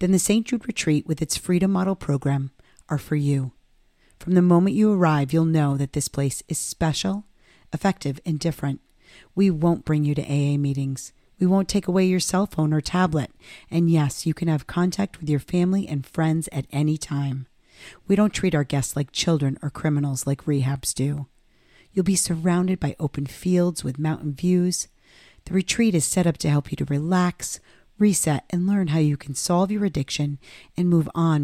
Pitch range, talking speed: 145-180 Hz, 195 wpm